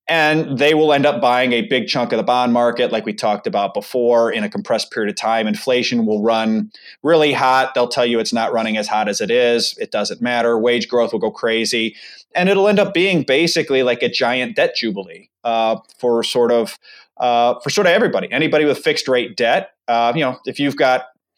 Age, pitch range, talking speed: 30-49, 115-150 Hz, 220 wpm